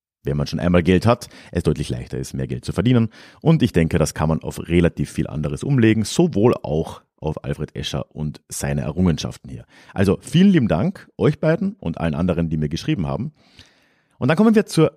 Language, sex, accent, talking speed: German, male, German, 210 wpm